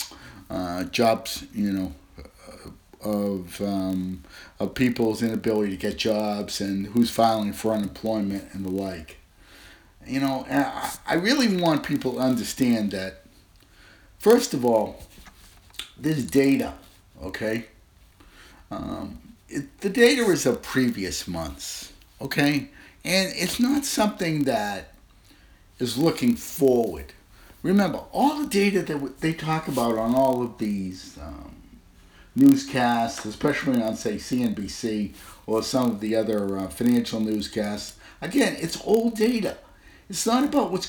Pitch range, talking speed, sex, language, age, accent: 100-165 Hz, 130 wpm, male, English, 50-69, American